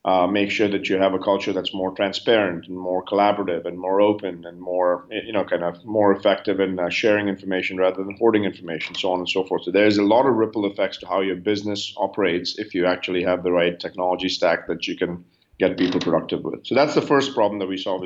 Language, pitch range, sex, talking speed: English, 90-105 Hz, male, 245 wpm